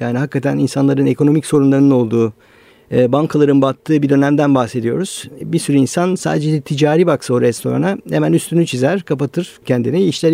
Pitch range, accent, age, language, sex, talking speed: 135-165 Hz, native, 50-69, Turkish, male, 145 wpm